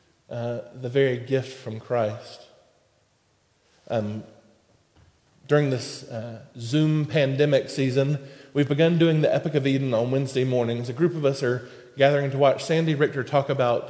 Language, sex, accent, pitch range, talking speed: English, male, American, 125-160 Hz, 150 wpm